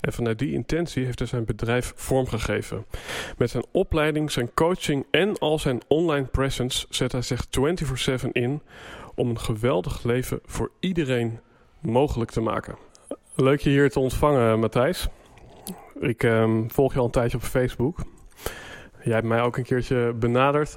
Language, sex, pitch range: Dutch, male, 115-140 Hz